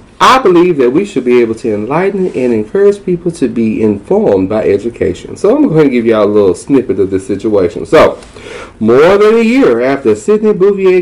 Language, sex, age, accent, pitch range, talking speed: English, male, 30-49, American, 125-200 Hz, 200 wpm